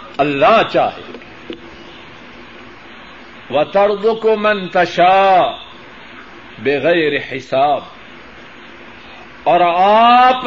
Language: Urdu